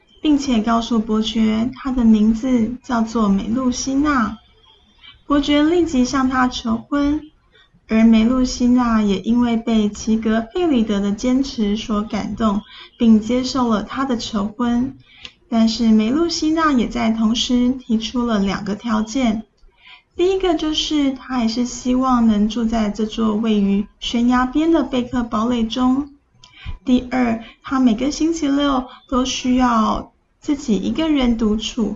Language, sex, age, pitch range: Chinese, female, 10-29, 220-270 Hz